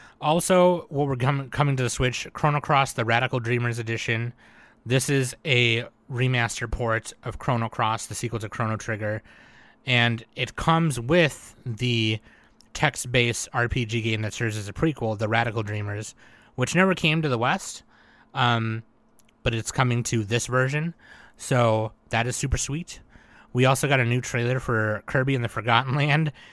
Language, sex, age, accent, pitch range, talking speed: English, male, 20-39, American, 115-135 Hz, 165 wpm